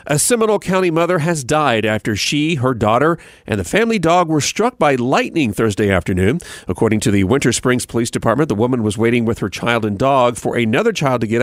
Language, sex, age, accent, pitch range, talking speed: English, male, 40-59, American, 115-165 Hz, 215 wpm